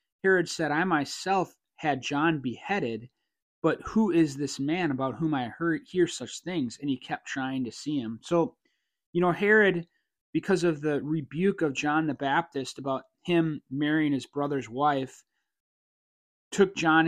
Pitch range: 130-165 Hz